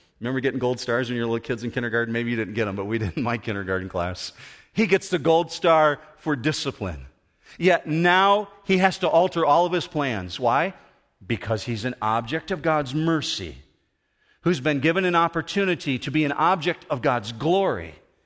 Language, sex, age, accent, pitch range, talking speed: English, male, 40-59, American, 115-170 Hz, 195 wpm